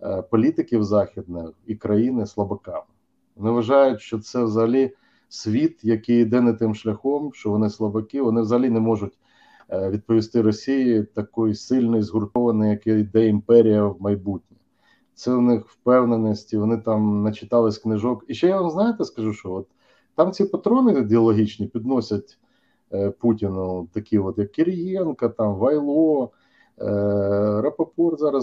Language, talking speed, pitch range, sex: Ukrainian, 130 wpm, 105-135 Hz, male